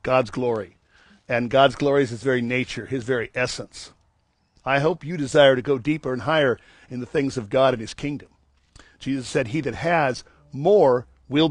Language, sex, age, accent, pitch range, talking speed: English, male, 50-69, American, 125-160 Hz, 190 wpm